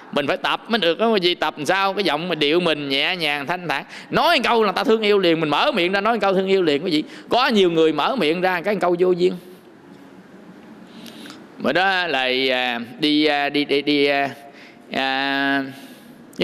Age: 20-39